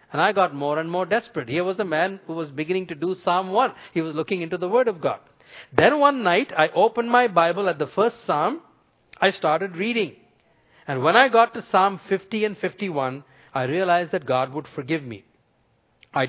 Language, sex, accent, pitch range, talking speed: English, male, Indian, 130-185 Hz, 210 wpm